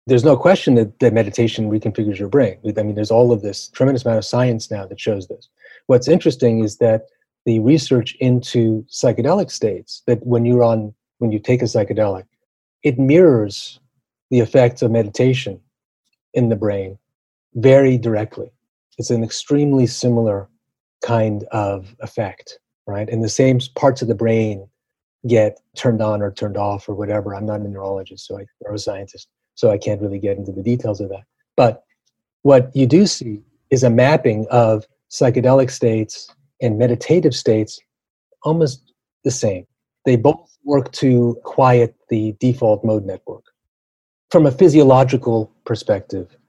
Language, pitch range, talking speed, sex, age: English, 105-130 Hz, 160 wpm, male, 30-49